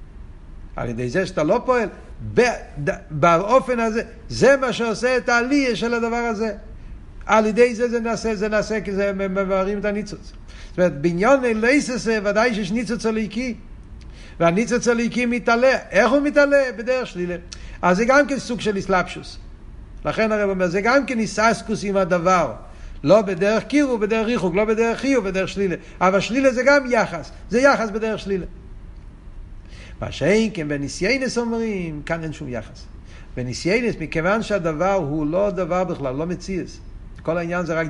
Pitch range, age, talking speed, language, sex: 175-225 Hz, 60-79, 160 wpm, Hebrew, male